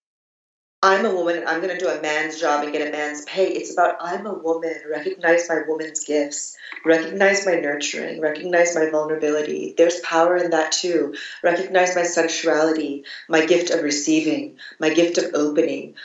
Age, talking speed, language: 30-49, 175 wpm, English